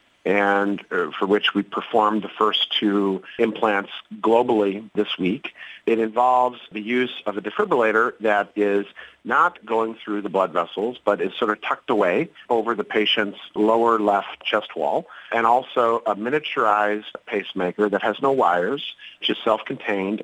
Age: 40-59